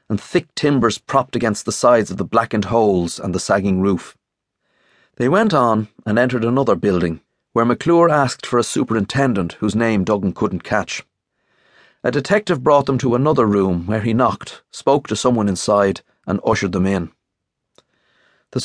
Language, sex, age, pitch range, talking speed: English, male, 30-49, 100-135 Hz, 165 wpm